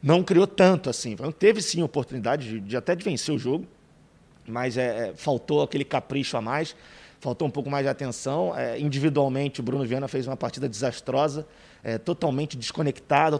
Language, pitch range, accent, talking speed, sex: Portuguese, 130-165 Hz, Brazilian, 160 wpm, male